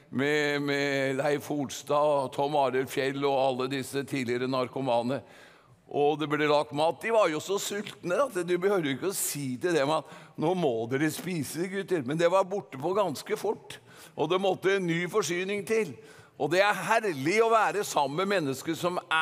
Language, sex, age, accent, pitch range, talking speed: English, male, 50-69, Swedish, 150-215 Hz, 185 wpm